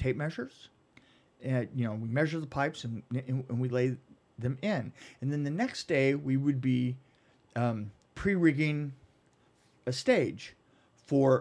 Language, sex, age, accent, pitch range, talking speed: English, male, 50-69, American, 130-175 Hz, 165 wpm